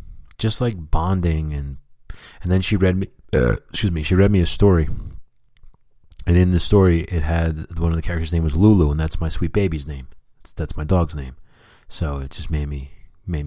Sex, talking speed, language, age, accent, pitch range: male, 200 wpm, English, 30-49, American, 75-95 Hz